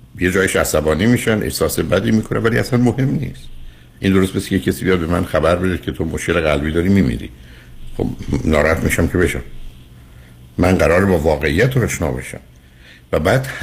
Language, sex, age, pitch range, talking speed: Persian, male, 60-79, 65-100 Hz, 175 wpm